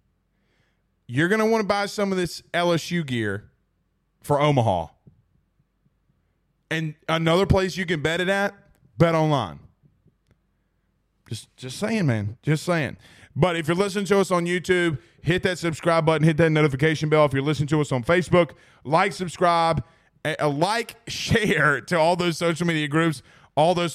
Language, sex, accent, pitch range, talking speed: English, male, American, 140-175 Hz, 165 wpm